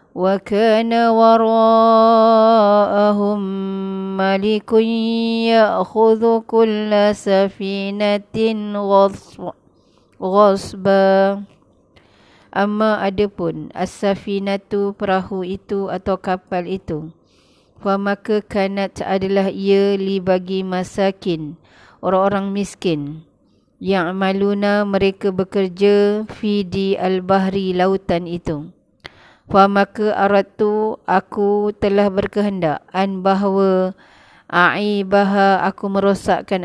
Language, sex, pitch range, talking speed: Malay, female, 190-205 Hz, 70 wpm